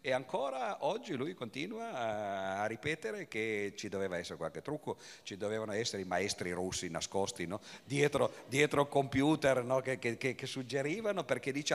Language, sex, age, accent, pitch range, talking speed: Italian, male, 50-69, native, 95-140 Hz, 160 wpm